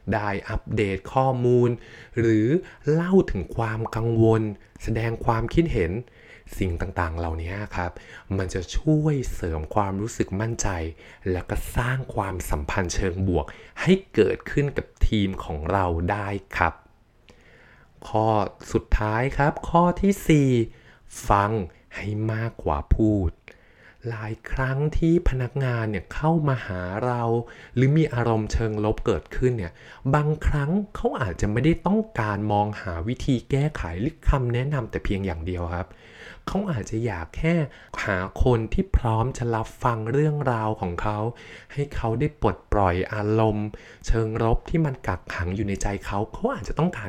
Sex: male